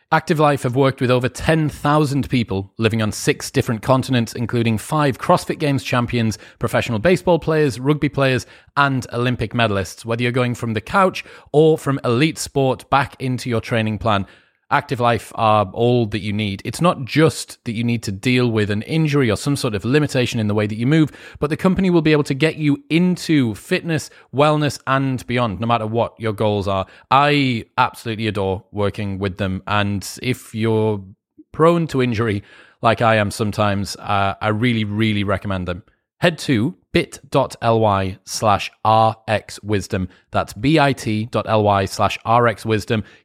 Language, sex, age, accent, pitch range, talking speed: English, male, 30-49, British, 105-140 Hz, 170 wpm